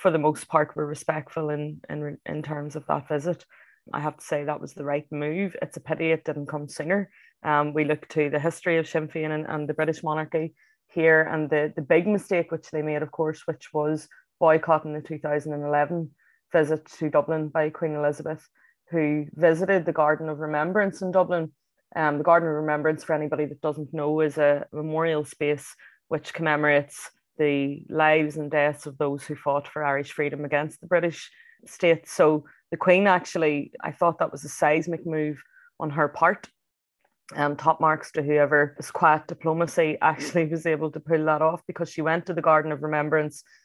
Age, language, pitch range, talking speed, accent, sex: 20-39, English, 150-165 Hz, 190 wpm, Irish, female